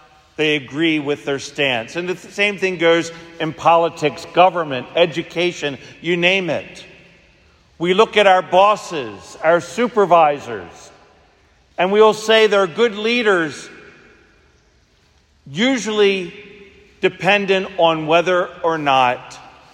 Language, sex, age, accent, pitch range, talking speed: English, male, 50-69, American, 105-165 Hz, 110 wpm